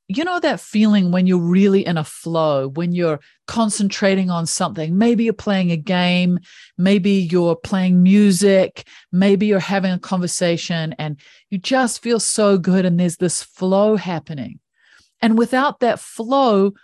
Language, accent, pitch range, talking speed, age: English, Australian, 175-215 Hz, 155 wpm, 40-59